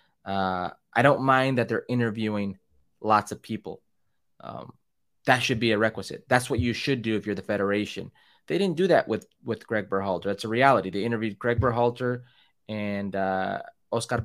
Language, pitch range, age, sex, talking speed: English, 110-155 Hz, 20-39, male, 180 wpm